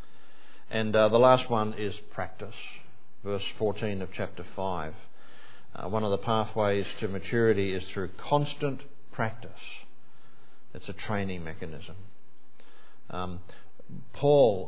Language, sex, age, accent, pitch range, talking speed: English, male, 50-69, Australian, 90-110 Hz, 120 wpm